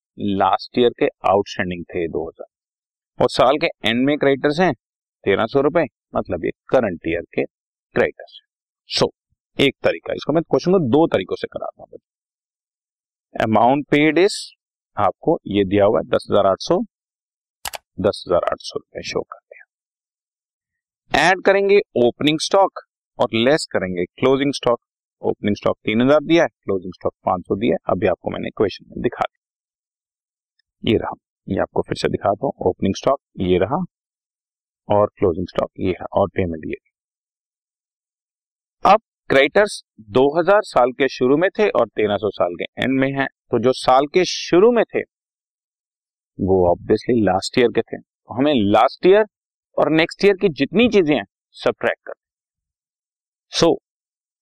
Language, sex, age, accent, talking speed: Hindi, male, 40-59, native, 150 wpm